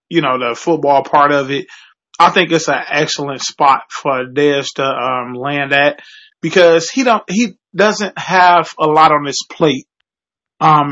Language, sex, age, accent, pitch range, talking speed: English, male, 20-39, American, 145-175 Hz, 170 wpm